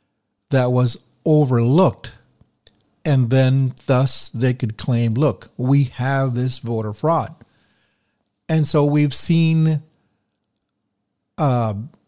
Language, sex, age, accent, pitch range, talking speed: English, male, 50-69, American, 115-145 Hz, 100 wpm